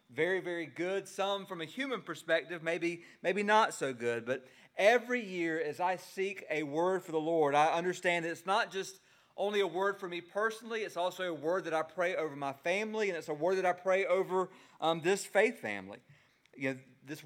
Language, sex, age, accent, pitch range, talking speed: English, male, 40-59, American, 155-195 Hz, 210 wpm